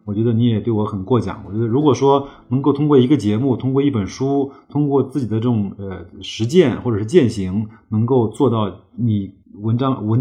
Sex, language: male, Chinese